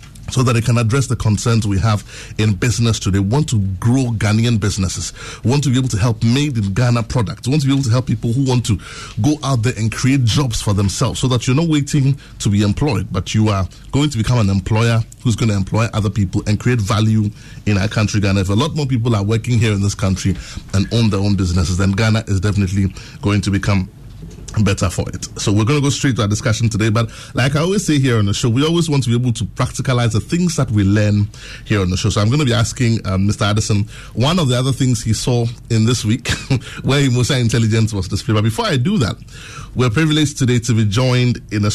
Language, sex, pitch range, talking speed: English, male, 105-125 Hz, 250 wpm